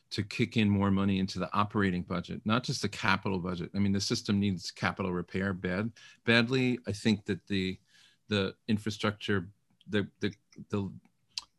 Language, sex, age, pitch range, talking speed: English, male, 40-59, 95-115 Hz, 160 wpm